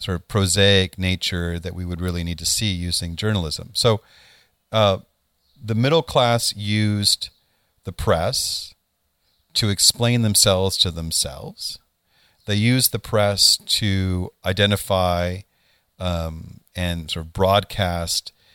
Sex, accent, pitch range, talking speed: male, American, 90-120 Hz, 120 wpm